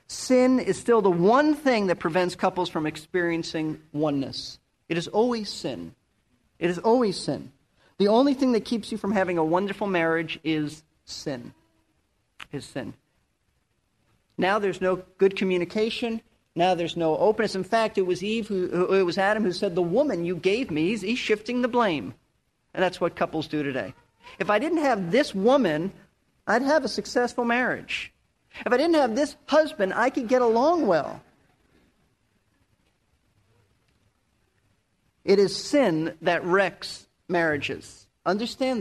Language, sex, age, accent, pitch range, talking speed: English, male, 40-59, American, 175-240 Hz, 155 wpm